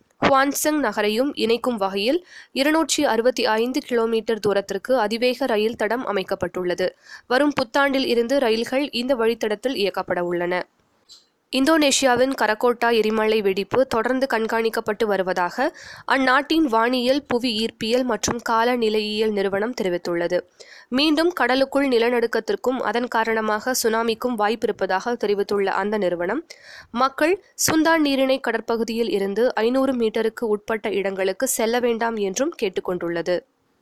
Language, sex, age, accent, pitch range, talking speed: Tamil, female, 20-39, native, 210-260 Hz, 105 wpm